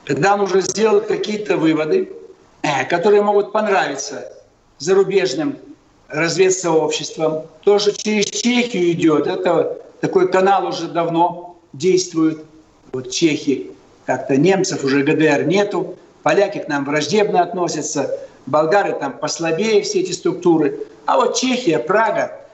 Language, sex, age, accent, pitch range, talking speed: Russian, male, 60-79, native, 160-240 Hz, 115 wpm